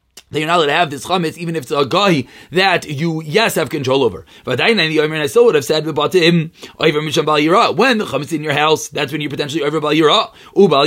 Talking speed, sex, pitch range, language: 250 wpm, male, 150-200 Hz, English